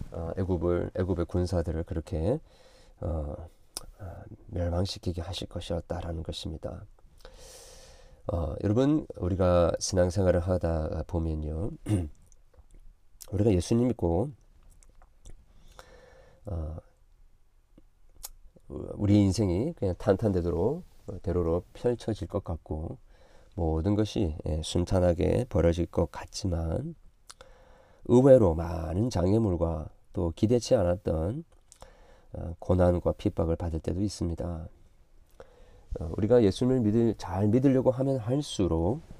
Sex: male